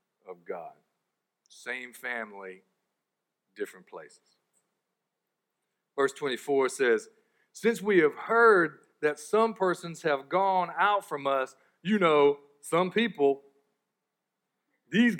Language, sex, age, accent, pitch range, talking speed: English, male, 50-69, American, 145-210 Hz, 105 wpm